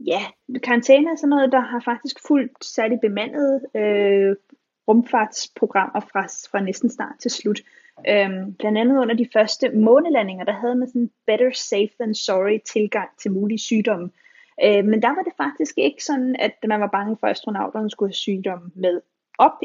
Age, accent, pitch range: 30-49, native, 205-255 Hz